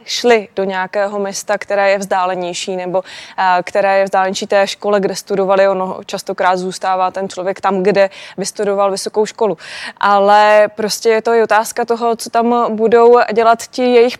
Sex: female